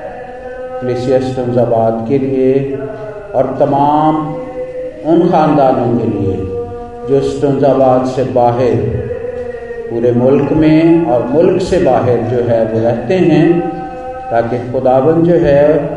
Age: 40-59